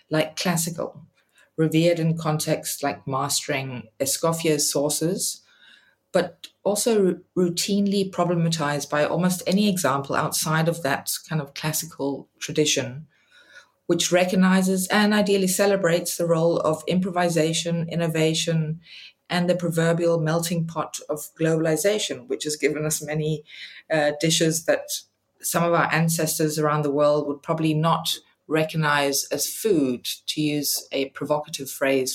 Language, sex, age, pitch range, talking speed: English, female, 20-39, 150-175 Hz, 125 wpm